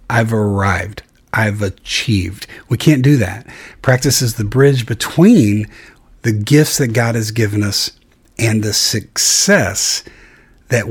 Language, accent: English, American